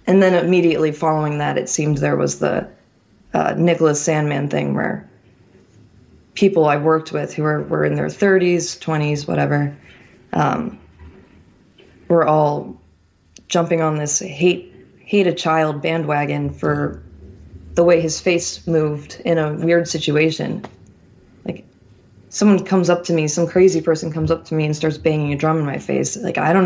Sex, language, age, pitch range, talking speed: female, English, 20-39, 145-170 Hz, 160 wpm